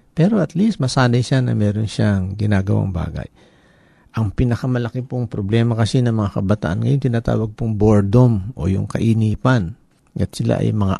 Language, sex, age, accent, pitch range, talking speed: Filipino, male, 50-69, native, 105-135 Hz, 160 wpm